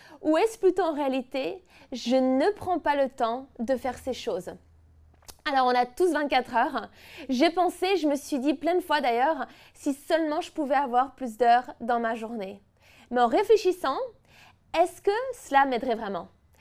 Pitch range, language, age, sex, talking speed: 245-330 Hz, French, 20-39, female, 175 wpm